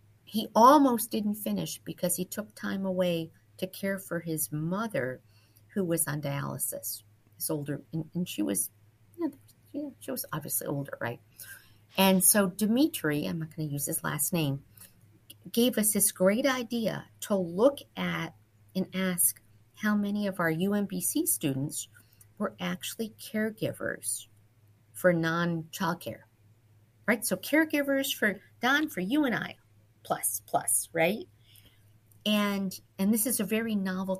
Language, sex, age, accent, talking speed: English, female, 50-69, American, 140 wpm